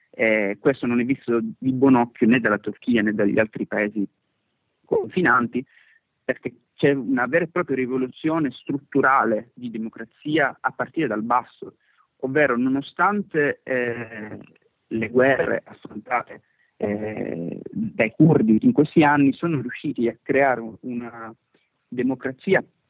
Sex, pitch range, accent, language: male, 115-145 Hz, native, Italian